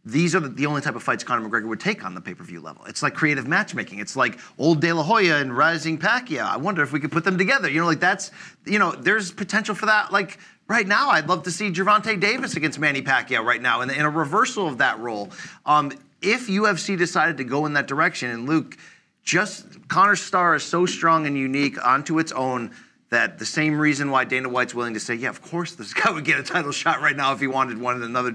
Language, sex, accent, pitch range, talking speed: English, male, American, 135-185 Hz, 250 wpm